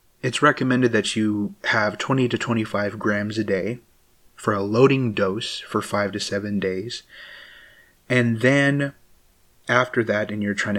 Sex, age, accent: male, 30-49, American